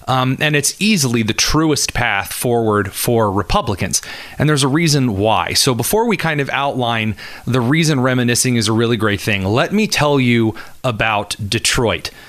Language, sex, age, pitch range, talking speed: English, male, 30-49, 105-135 Hz, 170 wpm